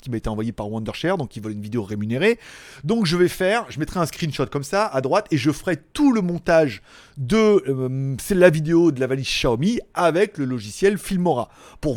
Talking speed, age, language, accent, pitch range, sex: 220 wpm, 30-49, French, French, 135-185 Hz, male